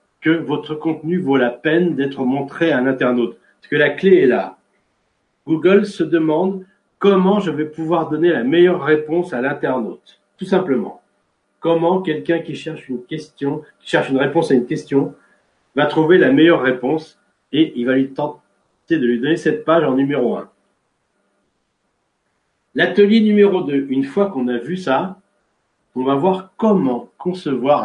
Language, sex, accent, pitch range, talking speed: French, male, French, 140-180 Hz, 165 wpm